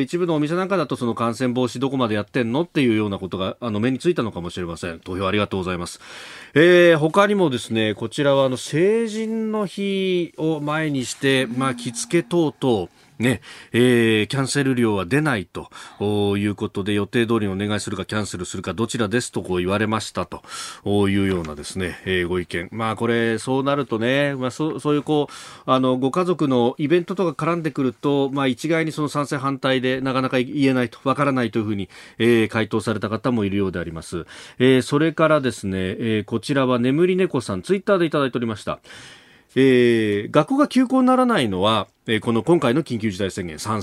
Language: Japanese